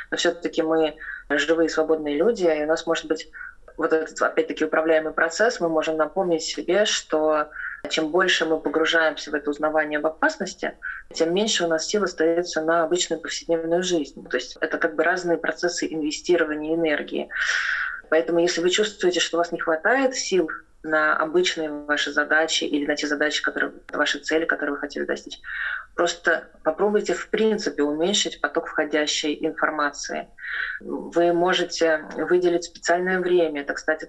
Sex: female